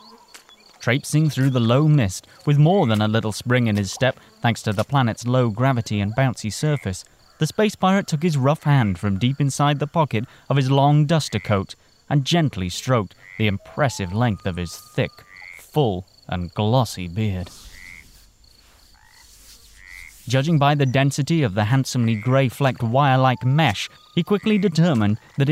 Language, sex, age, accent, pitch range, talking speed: English, male, 20-39, British, 110-145 Hz, 160 wpm